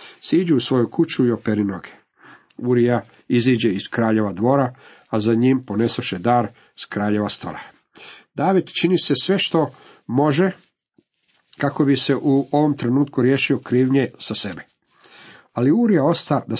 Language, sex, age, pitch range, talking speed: Croatian, male, 50-69, 115-135 Hz, 145 wpm